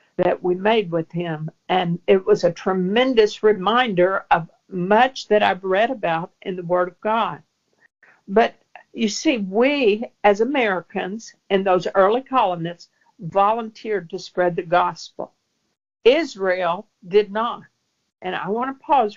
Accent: American